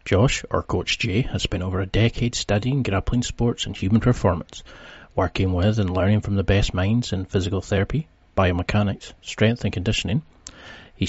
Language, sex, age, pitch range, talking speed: English, male, 40-59, 95-110 Hz, 170 wpm